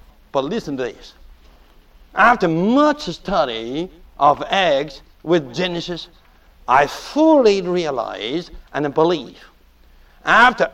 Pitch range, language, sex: 135-210 Hz, English, male